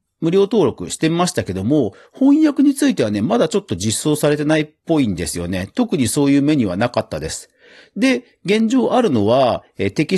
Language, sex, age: Japanese, male, 40-59